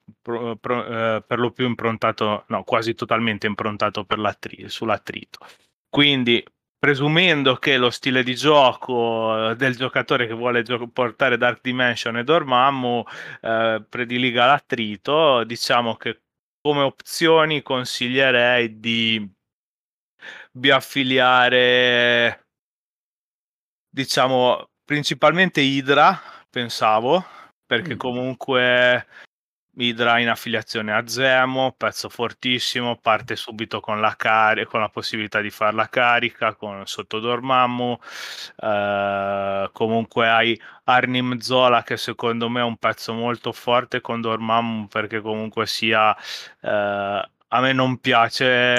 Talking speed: 110 wpm